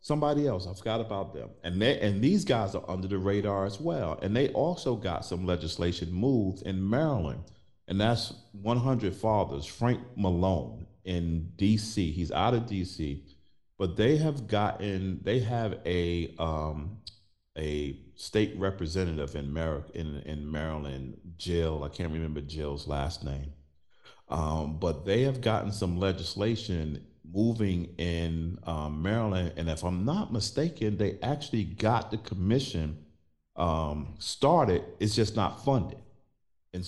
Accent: American